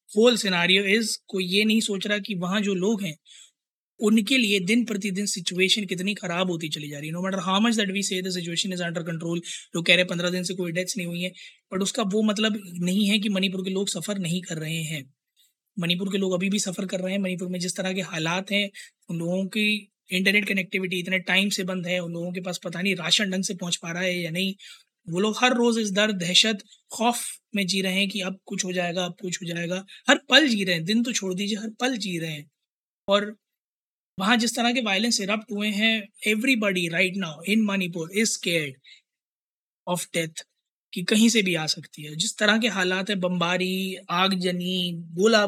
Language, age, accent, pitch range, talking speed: Hindi, 20-39, native, 180-210 Hz, 170 wpm